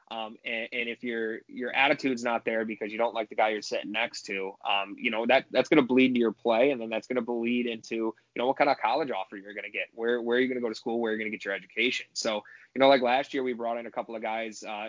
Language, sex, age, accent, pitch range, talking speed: English, male, 20-39, American, 110-120 Hz, 320 wpm